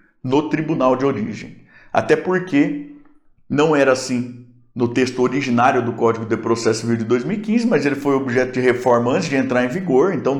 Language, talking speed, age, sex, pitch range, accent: Portuguese, 180 wpm, 50-69, male, 125-185 Hz, Brazilian